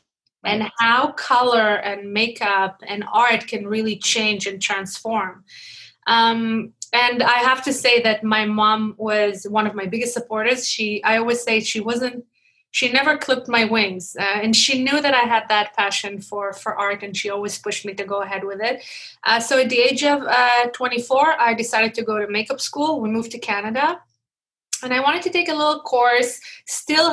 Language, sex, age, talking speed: English, female, 20-39, 195 wpm